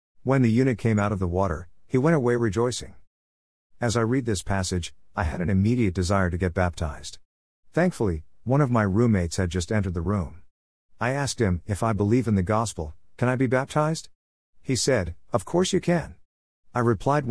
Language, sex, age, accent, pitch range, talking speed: English, male, 50-69, American, 90-120 Hz, 195 wpm